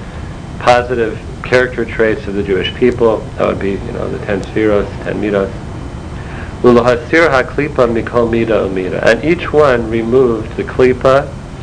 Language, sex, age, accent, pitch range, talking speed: English, male, 50-69, American, 100-120 Hz, 120 wpm